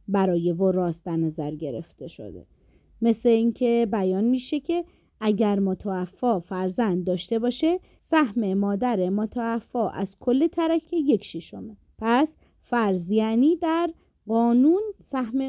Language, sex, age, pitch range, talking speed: Persian, female, 30-49, 190-290 Hz, 115 wpm